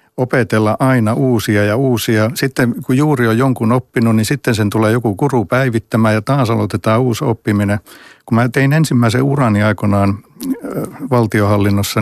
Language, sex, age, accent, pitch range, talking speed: Finnish, male, 60-79, native, 105-125 Hz, 150 wpm